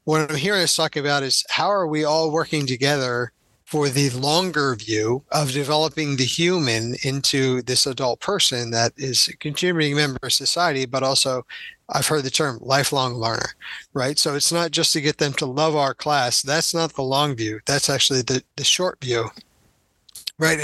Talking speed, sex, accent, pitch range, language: 185 wpm, male, American, 130-155 Hz, English